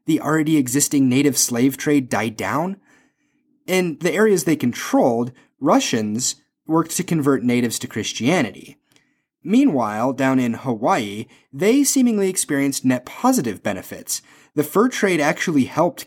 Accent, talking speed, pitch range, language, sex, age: American, 130 wpm, 120-170 Hz, English, male, 30-49